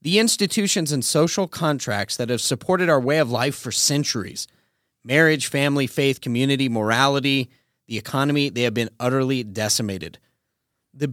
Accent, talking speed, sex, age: American, 145 wpm, male, 30-49